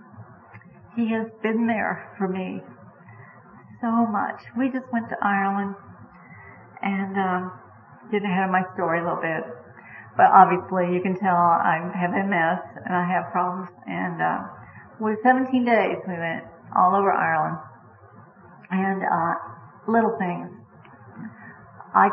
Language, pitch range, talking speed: English, 180-210 Hz, 135 wpm